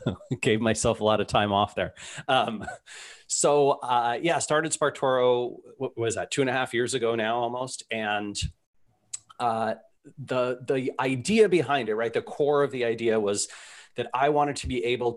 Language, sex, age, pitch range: English, male, 30-49, 120-160 Hz